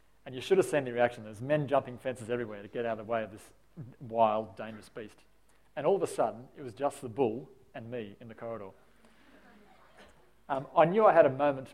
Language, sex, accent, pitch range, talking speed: English, male, Australian, 115-150 Hz, 230 wpm